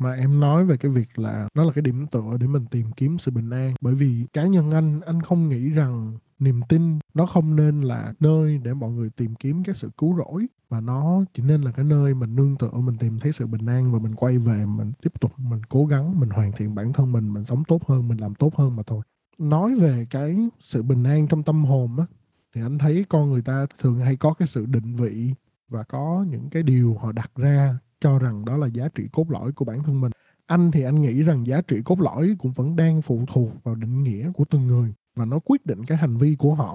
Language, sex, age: Vietnamese, male, 20-39